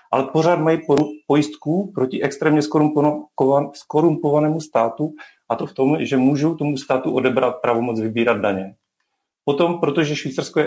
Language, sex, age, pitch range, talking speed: Slovak, male, 40-59, 125-150 Hz, 135 wpm